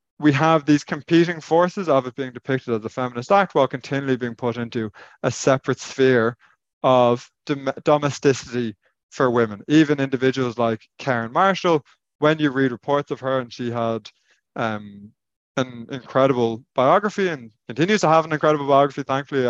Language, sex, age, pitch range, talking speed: English, male, 20-39, 120-150 Hz, 155 wpm